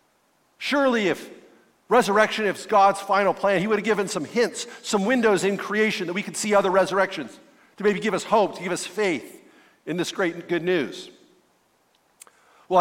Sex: male